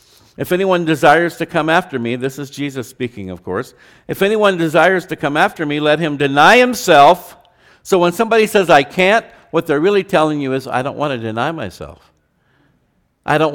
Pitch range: 115-160 Hz